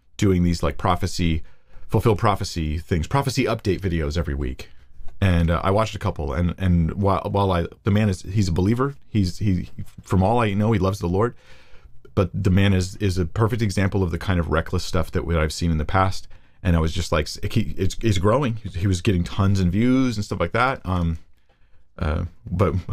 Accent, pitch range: American, 85-110 Hz